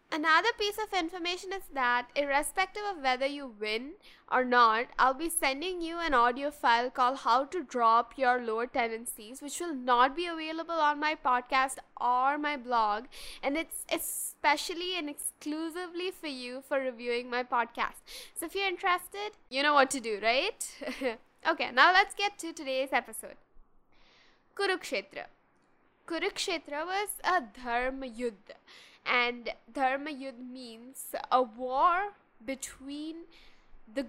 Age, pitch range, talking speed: 10-29, 250-330 Hz, 140 wpm